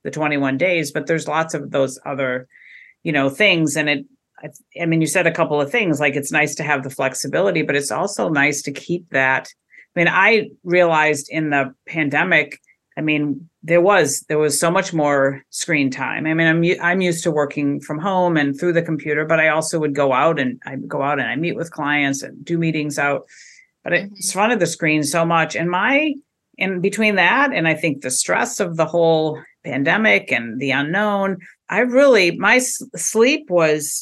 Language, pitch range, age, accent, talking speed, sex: English, 145-180 Hz, 50-69, American, 205 wpm, female